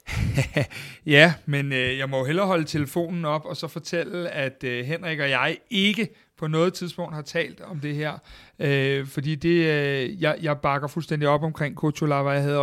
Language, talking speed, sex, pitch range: Danish, 190 wpm, male, 140-160 Hz